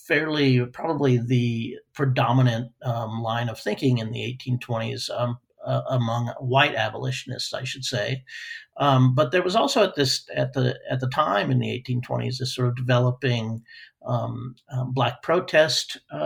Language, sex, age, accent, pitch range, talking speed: English, male, 50-69, American, 120-135 Hz, 155 wpm